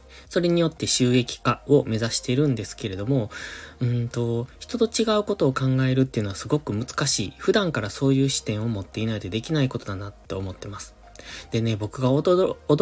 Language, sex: Japanese, male